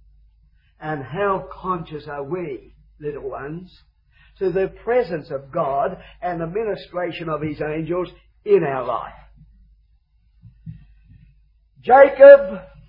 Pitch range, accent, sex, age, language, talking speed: 215-275 Hz, British, male, 50-69, English, 100 wpm